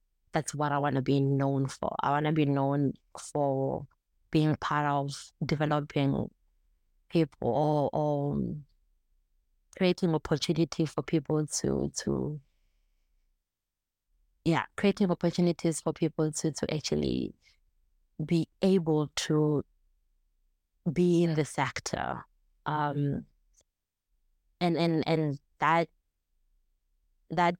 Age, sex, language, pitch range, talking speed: 30-49, female, English, 140-165 Hz, 105 wpm